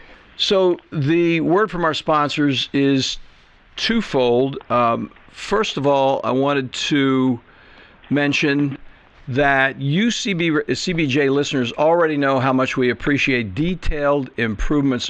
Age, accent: 60-79, American